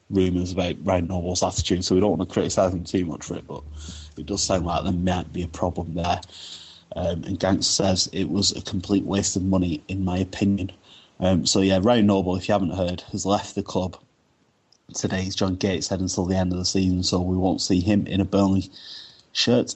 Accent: British